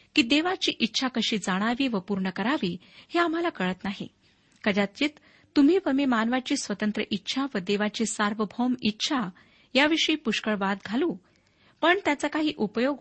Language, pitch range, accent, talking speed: Marathi, 205-275 Hz, native, 145 wpm